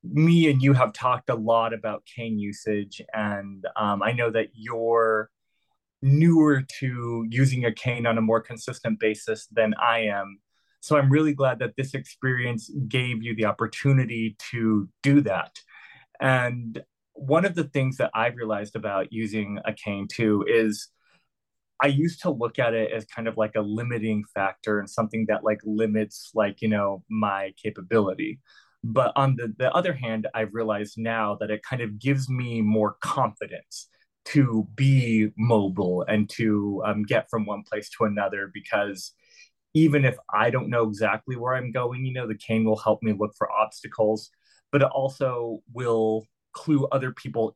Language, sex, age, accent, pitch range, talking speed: English, male, 20-39, American, 105-130 Hz, 175 wpm